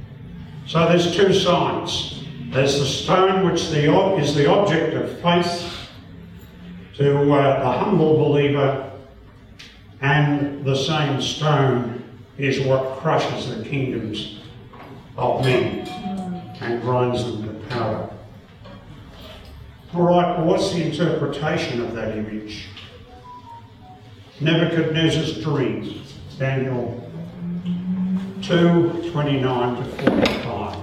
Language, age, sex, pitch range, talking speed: English, 60-79, male, 115-155 Hz, 90 wpm